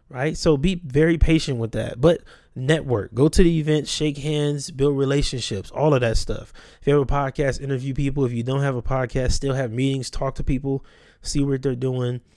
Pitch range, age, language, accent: 120-155 Hz, 20-39, English, American